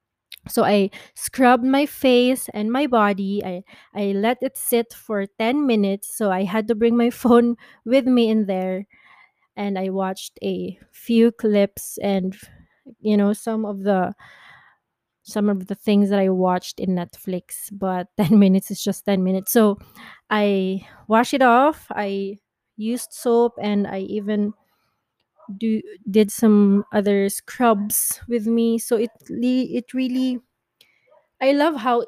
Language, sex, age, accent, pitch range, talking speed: English, female, 20-39, Filipino, 200-240 Hz, 150 wpm